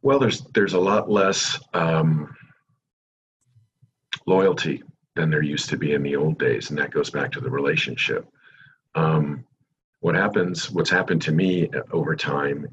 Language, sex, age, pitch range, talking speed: English, male, 50-69, 75-105 Hz, 155 wpm